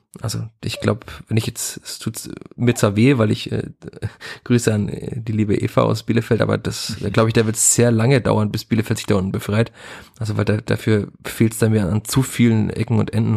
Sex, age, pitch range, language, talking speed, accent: male, 30-49, 110-120 Hz, German, 235 wpm, German